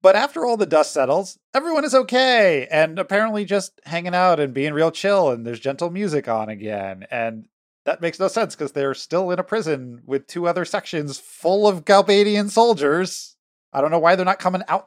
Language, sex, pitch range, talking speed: English, male, 110-190 Hz, 205 wpm